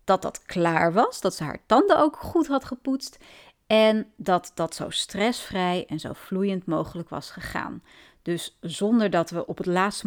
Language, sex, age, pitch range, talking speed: Dutch, female, 30-49, 170-240 Hz, 180 wpm